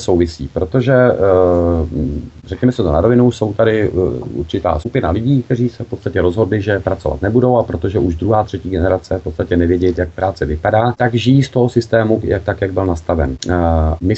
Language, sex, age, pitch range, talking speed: Czech, male, 40-59, 90-115 Hz, 180 wpm